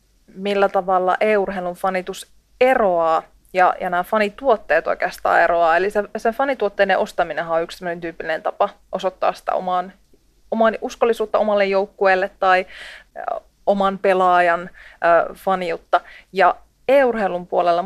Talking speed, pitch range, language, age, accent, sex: 120 wpm, 180-205 Hz, Finnish, 30-49, native, female